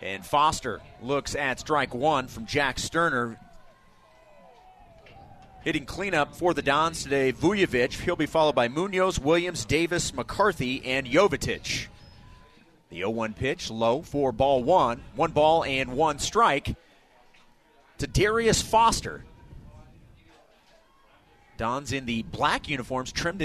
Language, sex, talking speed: English, male, 120 wpm